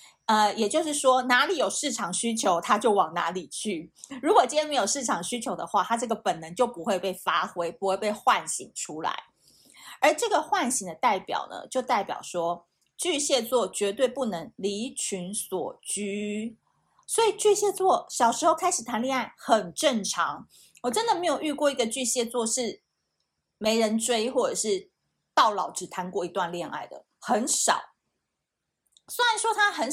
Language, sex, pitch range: Chinese, female, 200-290 Hz